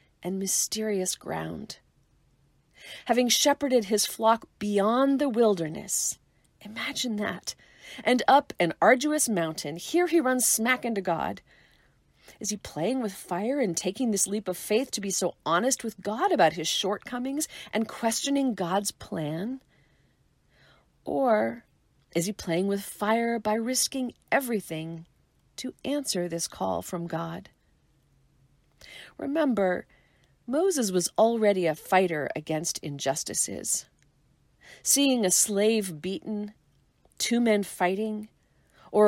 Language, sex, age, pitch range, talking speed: English, female, 40-59, 180-245 Hz, 120 wpm